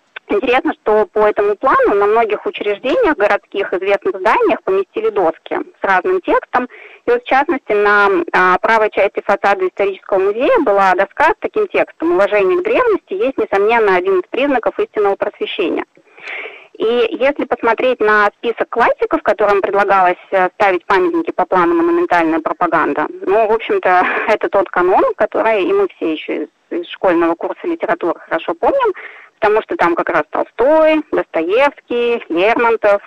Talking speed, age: 145 wpm, 20-39